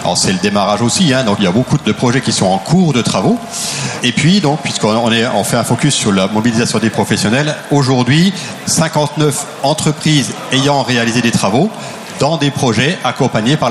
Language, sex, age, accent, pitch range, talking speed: French, male, 40-59, French, 125-155 Hz, 195 wpm